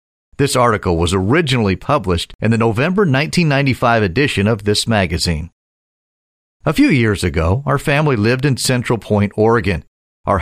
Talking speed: 145 wpm